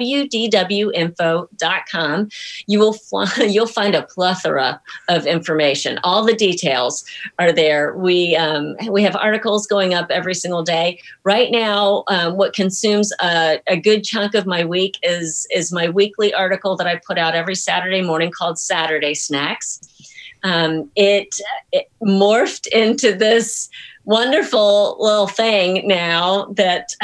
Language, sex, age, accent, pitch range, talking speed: English, female, 50-69, American, 170-215 Hz, 140 wpm